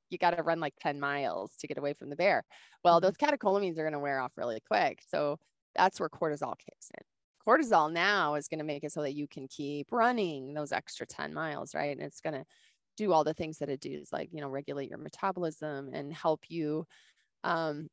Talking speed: 230 wpm